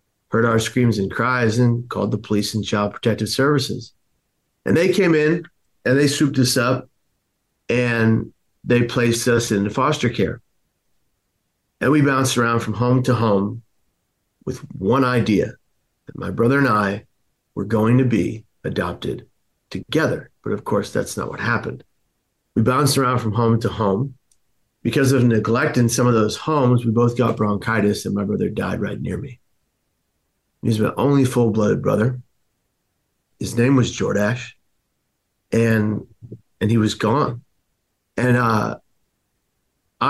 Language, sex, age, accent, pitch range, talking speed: English, male, 40-59, American, 110-125 Hz, 150 wpm